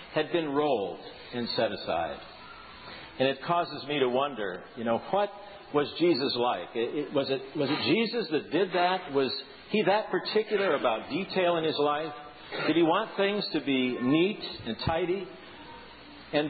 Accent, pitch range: American, 130-195 Hz